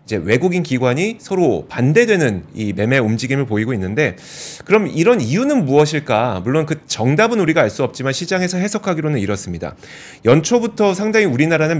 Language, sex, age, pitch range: Korean, male, 30-49, 130-180 Hz